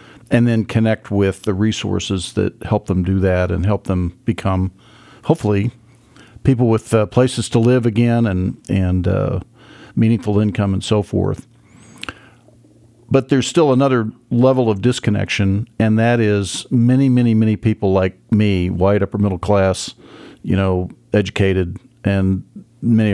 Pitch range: 100-120 Hz